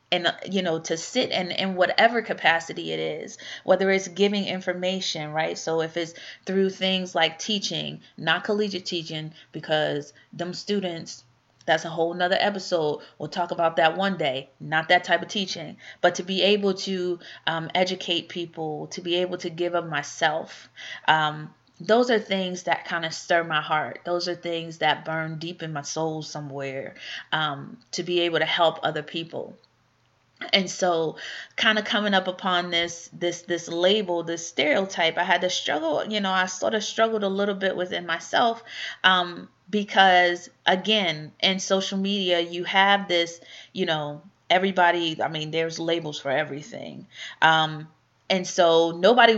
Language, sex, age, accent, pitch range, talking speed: English, female, 30-49, American, 160-190 Hz, 170 wpm